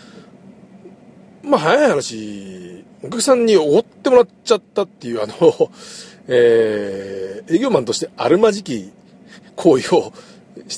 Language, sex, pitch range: Japanese, male, 140-225 Hz